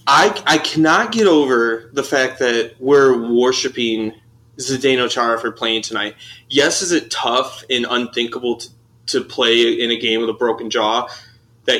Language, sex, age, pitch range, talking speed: English, male, 20-39, 115-145 Hz, 165 wpm